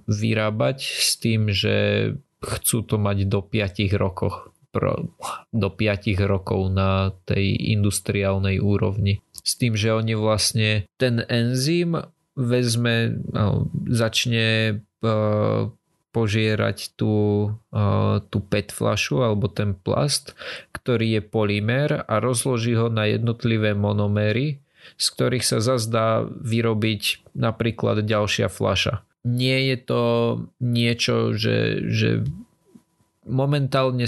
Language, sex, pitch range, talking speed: Slovak, male, 100-120 Hz, 100 wpm